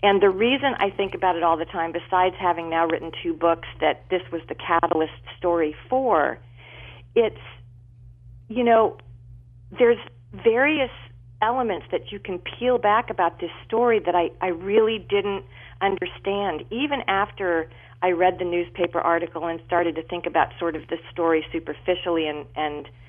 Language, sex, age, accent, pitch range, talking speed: English, female, 40-59, American, 145-195 Hz, 160 wpm